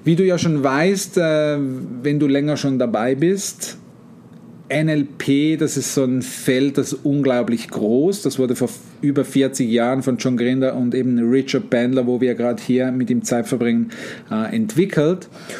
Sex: male